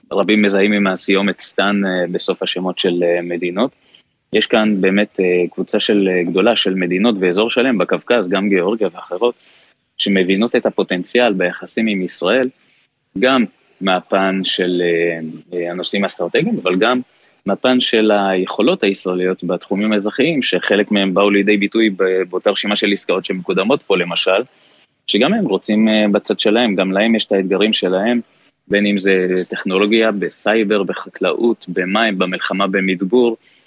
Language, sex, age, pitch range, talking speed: Hebrew, male, 20-39, 90-105 Hz, 130 wpm